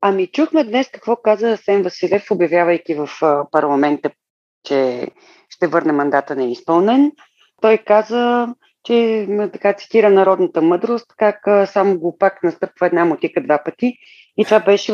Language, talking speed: Bulgarian, 135 wpm